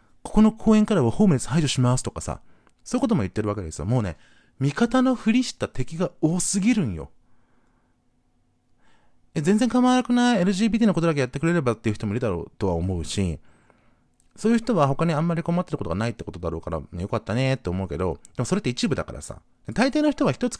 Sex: male